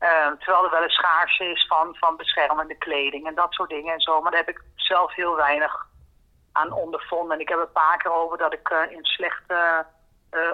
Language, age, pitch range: Dutch, 40-59, 160-180 Hz